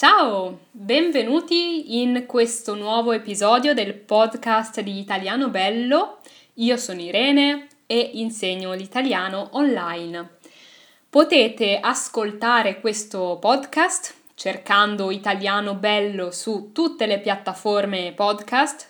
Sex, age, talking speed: female, 10-29, 95 wpm